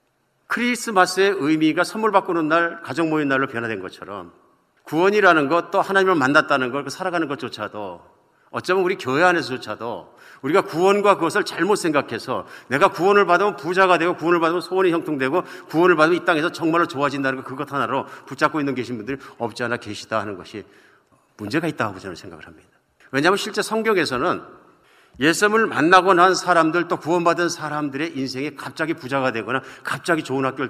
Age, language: 50-69, Korean